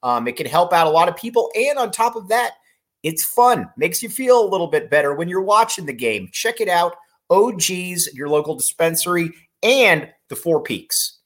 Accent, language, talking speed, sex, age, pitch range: American, English, 210 wpm, male, 30-49, 155-230 Hz